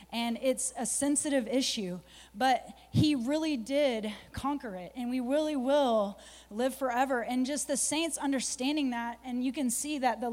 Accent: American